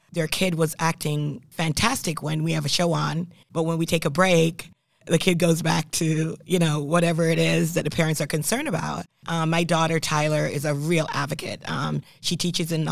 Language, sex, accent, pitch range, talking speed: English, female, American, 150-170 Hz, 215 wpm